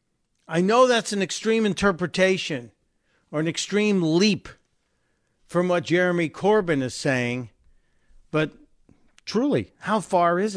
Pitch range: 155-215 Hz